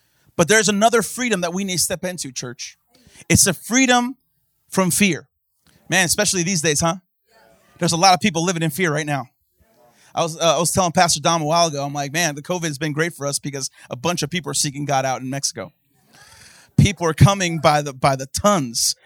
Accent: American